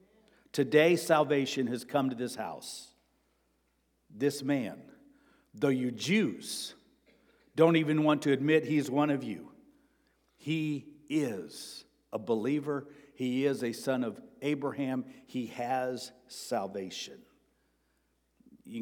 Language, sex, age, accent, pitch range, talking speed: English, male, 60-79, American, 125-155 Hz, 110 wpm